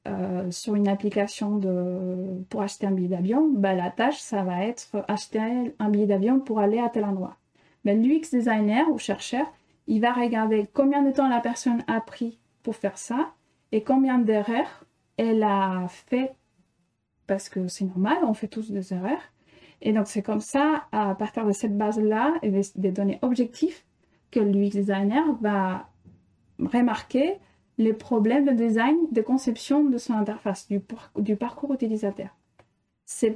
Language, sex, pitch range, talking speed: French, female, 200-245 Hz, 165 wpm